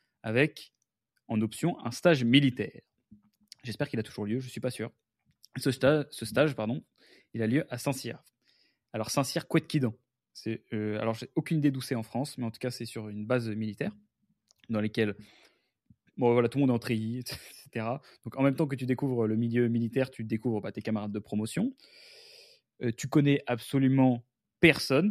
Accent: French